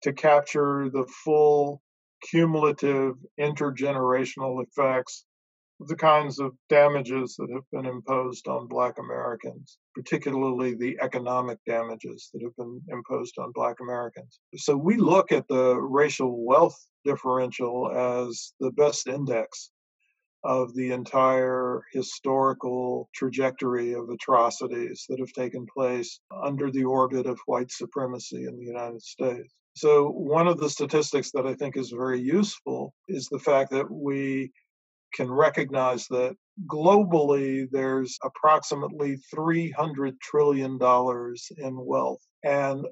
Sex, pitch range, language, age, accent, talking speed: male, 125-145 Hz, English, 50-69, American, 125 wpm